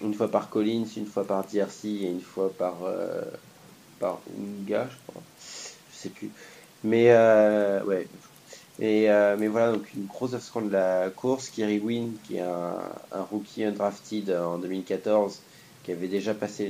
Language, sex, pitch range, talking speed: English, male, 95-110 Hz, 180 wpm